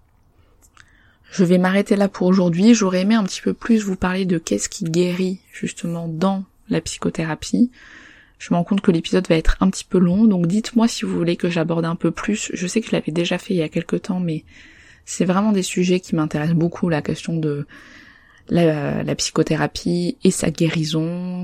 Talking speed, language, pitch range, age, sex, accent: 205 wpm, French, 155-185 Hz, 20-39, female, French